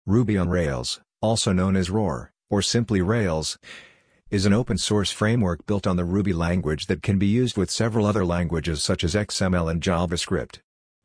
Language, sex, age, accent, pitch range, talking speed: English, male, 50-69, American, 90-105 Hz, 175 wpm